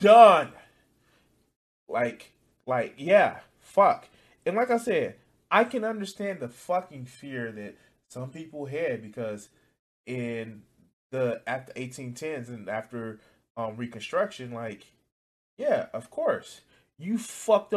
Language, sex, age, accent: English, male, 20-39, American